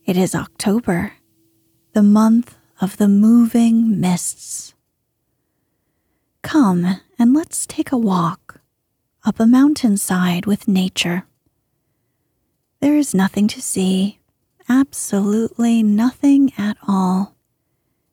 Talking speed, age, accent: 95 wpm, 30-49, American